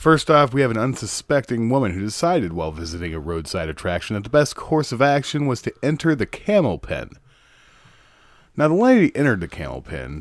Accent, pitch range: American, 85-130 Hz